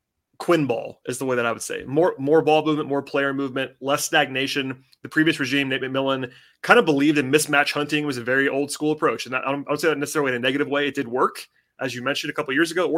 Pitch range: 135-155 Hz